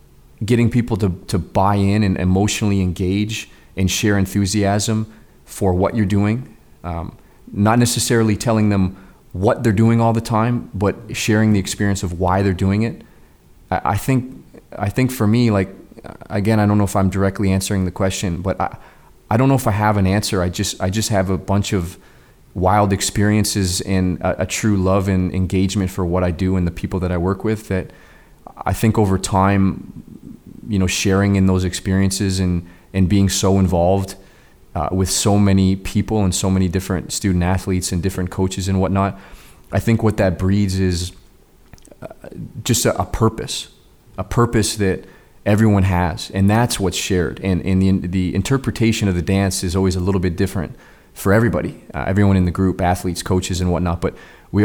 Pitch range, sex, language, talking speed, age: 95-105 Hz, male, English, 190 wpm, 30-49